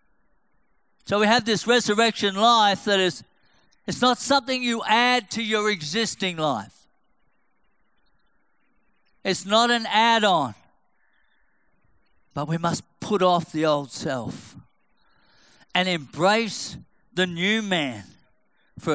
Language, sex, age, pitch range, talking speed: English, male, 50-69, 170-225 Hz, 110 wpm